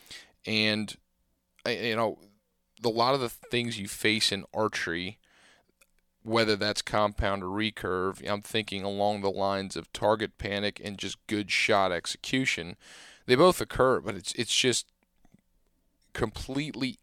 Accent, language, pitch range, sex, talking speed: American, English, 100-115 Hz, male, 135 wpm